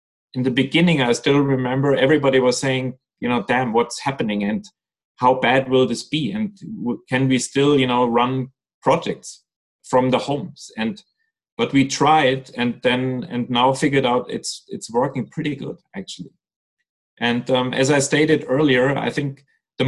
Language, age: English, 30-49